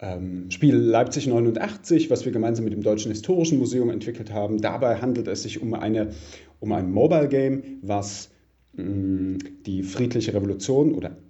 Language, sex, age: English, male, 40-59